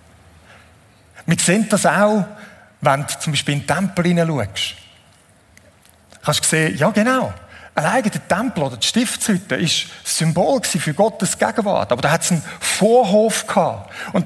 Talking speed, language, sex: 155 wpm, German, male